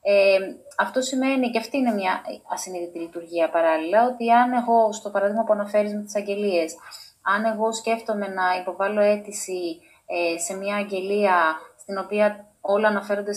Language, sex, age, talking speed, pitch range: Greek, female, 20-39, 150 wpm, 190-245 Hz